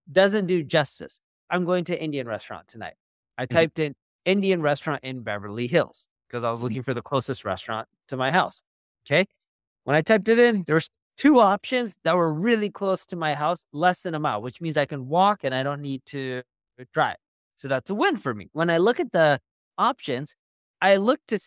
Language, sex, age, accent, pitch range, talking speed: English, male, 30-49, American, 140-220 Hz, 205 wpm